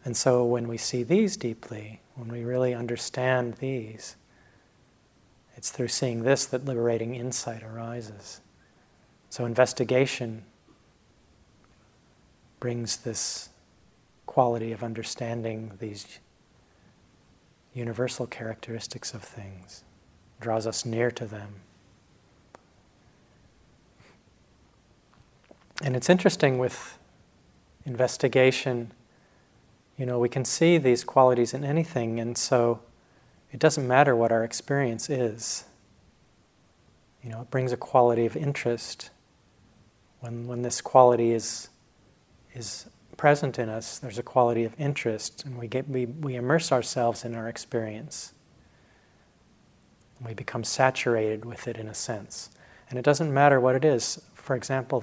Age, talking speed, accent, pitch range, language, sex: 40-59, 120 wpm, American, 115-130 Hz, English, male